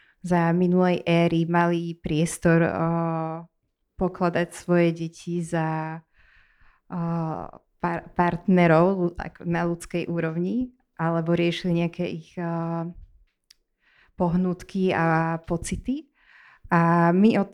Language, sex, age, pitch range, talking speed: Slovak, female, 20-39, 170-200 Hz, 95 wpm